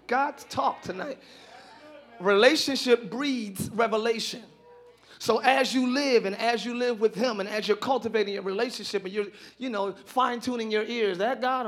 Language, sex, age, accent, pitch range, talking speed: English, male, 30-49, American, 170-225 Hz, 165 wpm